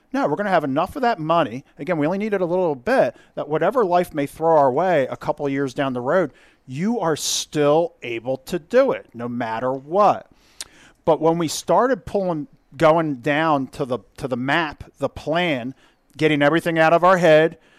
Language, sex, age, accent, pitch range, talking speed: English, male, 40-59, American, 135-170 Hz, 205 wpm